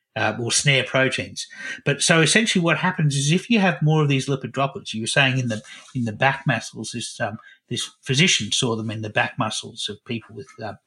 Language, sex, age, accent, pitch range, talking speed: English, male, 50-69, Australian, 125-160 Hz, 230 wpm